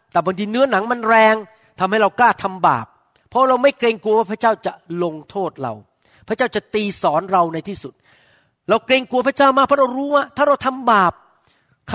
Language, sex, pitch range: Thai, male, 155-230 Hz